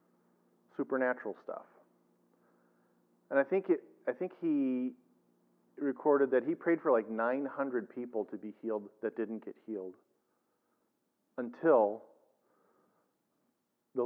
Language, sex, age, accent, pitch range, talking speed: English, male, 40-59, American, 105-180 Hz, 100 wpm